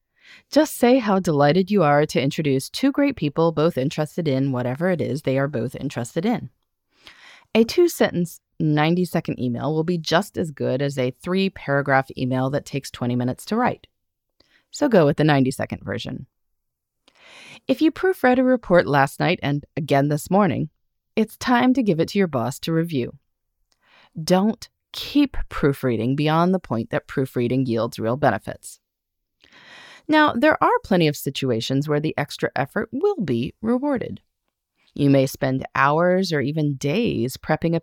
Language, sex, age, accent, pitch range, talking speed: English, female, 30-49, American, 135-225 Hz, 160 wpm